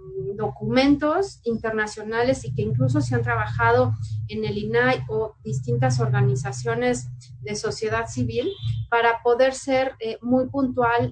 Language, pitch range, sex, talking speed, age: Spanish, 200-260 Hz, female, 125 wpm, 30-49